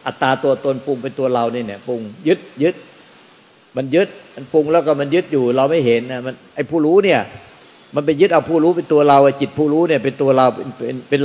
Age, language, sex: 60-79, Thai, male